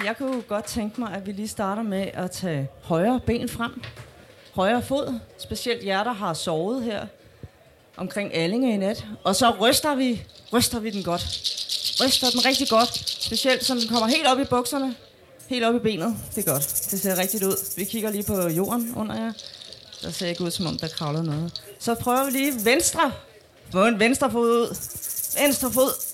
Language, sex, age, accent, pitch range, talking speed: Danish, female, 30-49, native, 190-245 Hz, 195 wpm